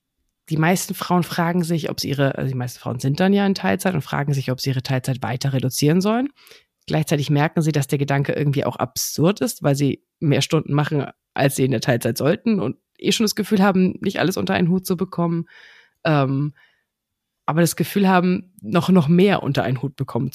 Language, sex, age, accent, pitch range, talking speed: German, female, 30-49, German, 140-195 Hz, 215 wpm